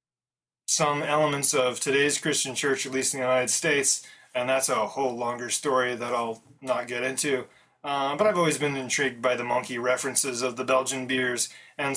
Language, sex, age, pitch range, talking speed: English, male, 30-49, 130-150 Hz, 190 wpm